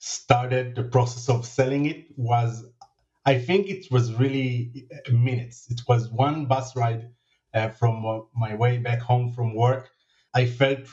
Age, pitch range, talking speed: 30-49, 115-130 Hz, 155 wpm